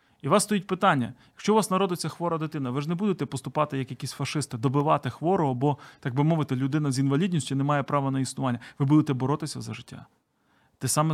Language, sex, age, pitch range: Ukrainian, male, 30-49, 130-160 Hz